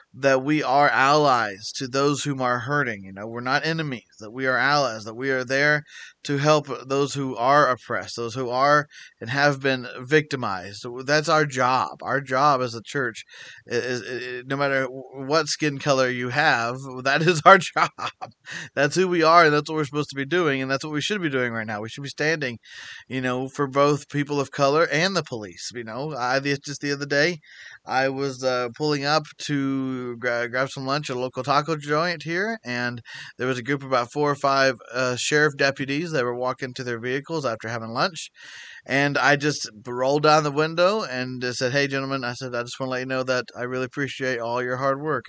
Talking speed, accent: 215 wpm, American